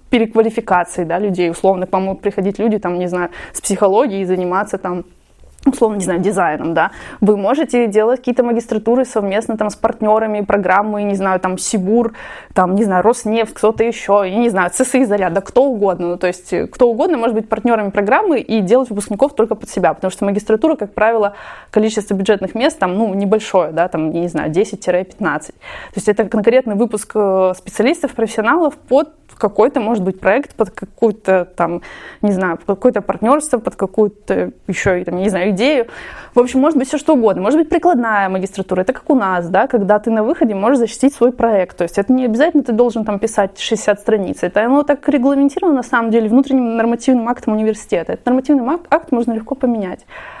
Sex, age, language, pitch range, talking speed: female, 20-39, Russian, 195-250 Hz, 185 wpm